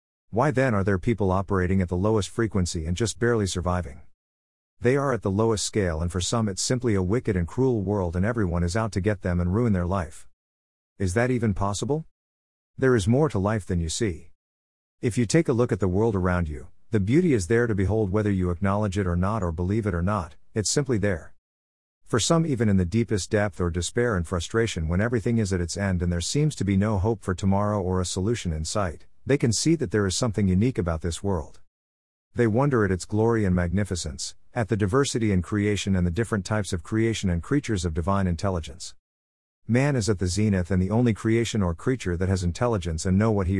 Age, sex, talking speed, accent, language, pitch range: 50-69, male, 230 wpm, American, English, 90-115 Hz